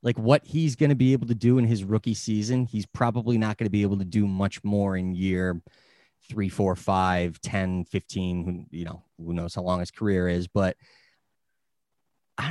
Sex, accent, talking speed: male, American, 200 wpm